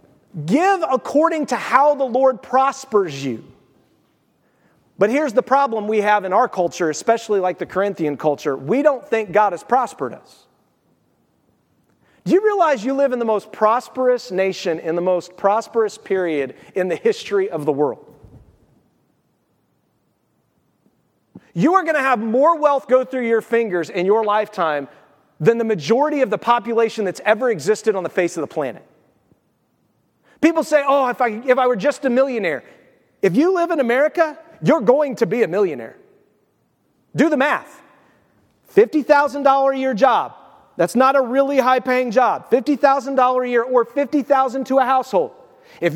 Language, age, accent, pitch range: English, 40-59, American, 205-275 Hz